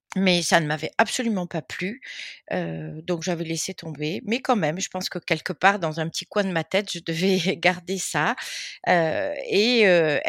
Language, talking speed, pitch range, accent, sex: French, 200 wpm, 170-215 Hz, French, female